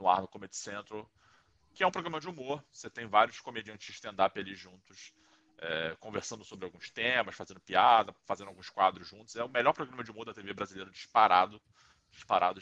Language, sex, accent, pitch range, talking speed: Portuguese, male, Brazilian, 100-120 Hz, 185 wpm